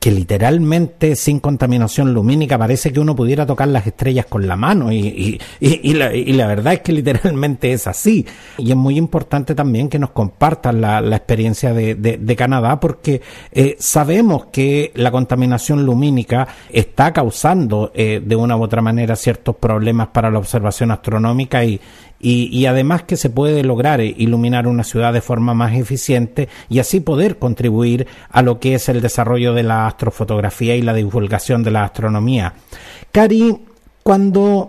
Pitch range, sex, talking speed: 115-155 Hz, male, 175 wpm